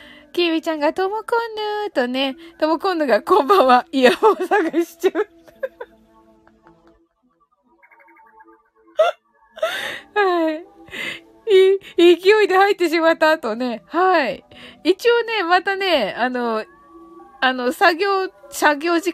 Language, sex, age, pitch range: Japanese, female, 20-39, 260-375 Hz